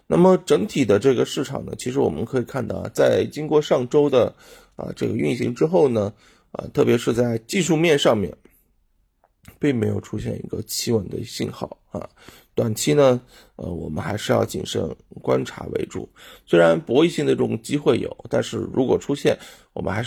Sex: male